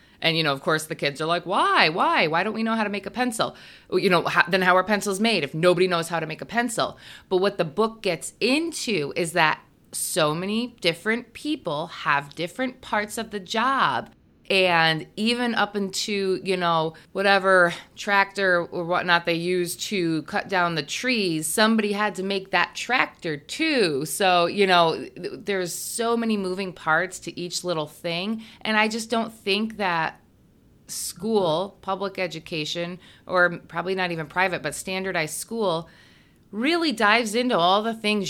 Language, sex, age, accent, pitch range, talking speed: English, female, 30-49, American, 170-230 Hz, 175 wpm